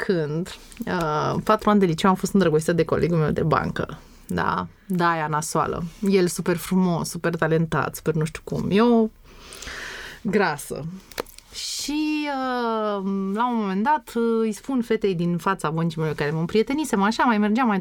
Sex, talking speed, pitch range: female, 150 wpm, 160-220 Hz